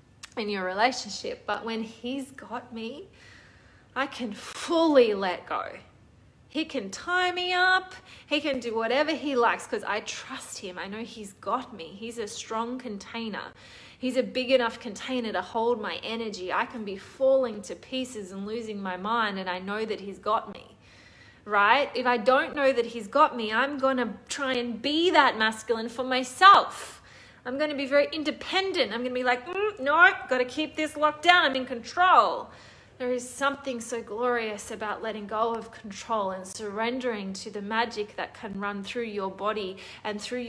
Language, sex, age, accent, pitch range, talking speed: English, female, 20-39, Australian, 215-260 Hz, 185 wpm